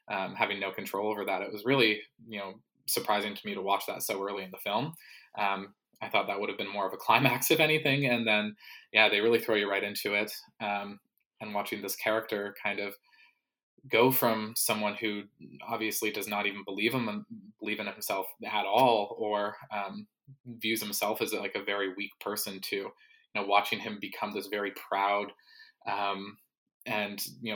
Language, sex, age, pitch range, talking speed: English, male, 20-39, 105-120 Hz, 195 wpm